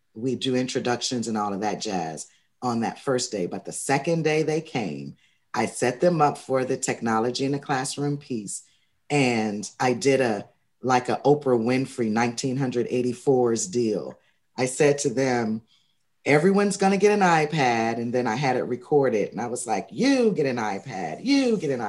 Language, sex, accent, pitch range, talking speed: English, female, American, 115-145 Hz, 180 wpm